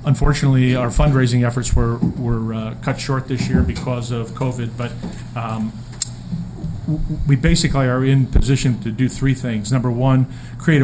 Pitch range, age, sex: 115-135 Hz, 40-59, male